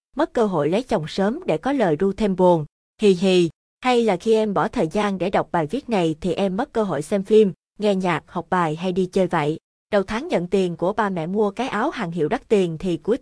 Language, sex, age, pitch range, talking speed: Vietnamese, female, 20-39, 180-220 Hz, 260 wpm